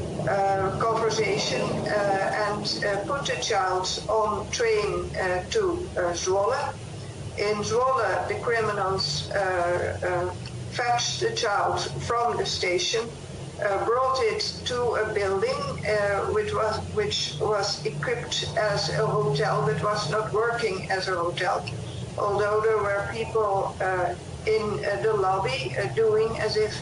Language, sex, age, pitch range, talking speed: English, female, 60-79, 190-235 Hz, 135 wpm